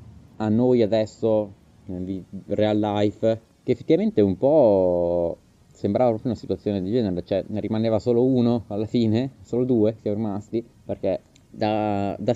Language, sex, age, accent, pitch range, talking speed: Italian, male, 20-39, native, 95-120 Hz, 145 wpm